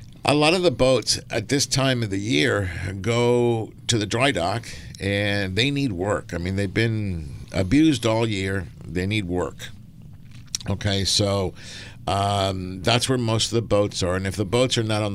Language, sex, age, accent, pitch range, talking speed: English, male, 60-79, American, 90-120 Hz, 185 wpm